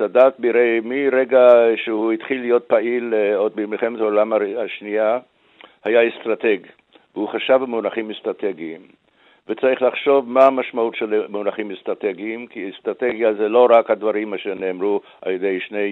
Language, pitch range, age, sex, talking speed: Hebrew, 105-125 Hz, 60-79, male, 130 wpm